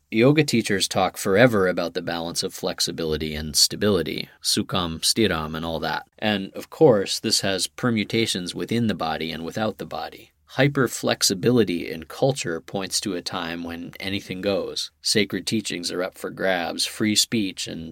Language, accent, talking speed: English, American, 160 wpm